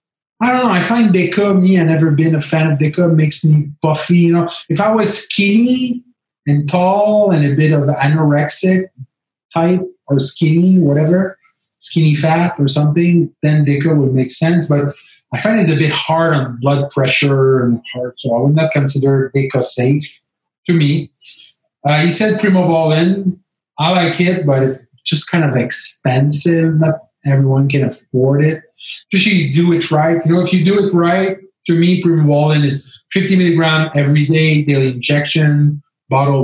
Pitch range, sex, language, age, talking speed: 145-175 Hz, male, English, 30-49, 175 wpm